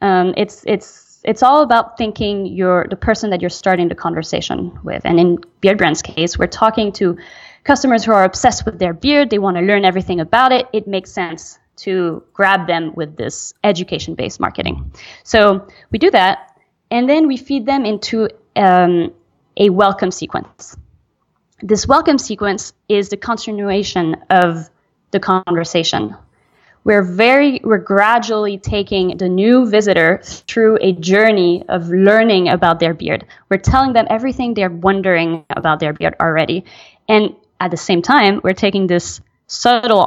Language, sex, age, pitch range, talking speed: English, female, 20-39, 180-220 Hz, 160 wpm